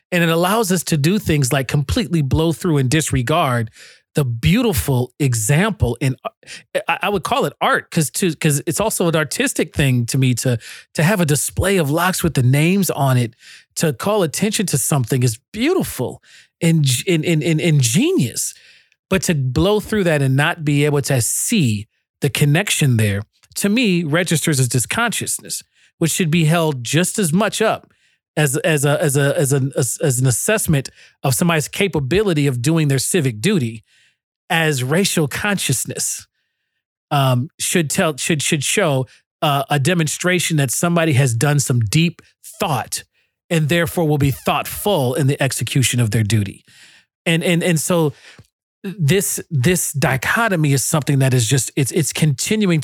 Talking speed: 160 wpm